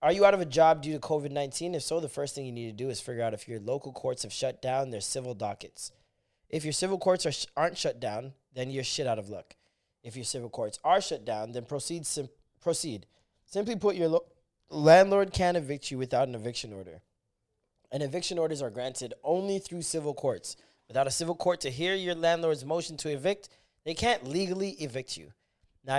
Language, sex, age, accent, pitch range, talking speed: English, male, 20-39, American, 125-165 Hz, 210 wpm